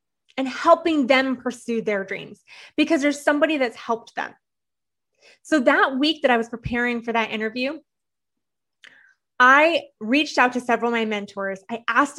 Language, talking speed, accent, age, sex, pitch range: English, 160 wpm, American, 20-39, female, 235-295 Hz